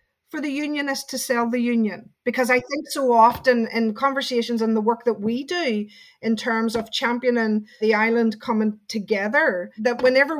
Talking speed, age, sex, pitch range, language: 175 wpm, 30-49, female, 220-260 Hz, English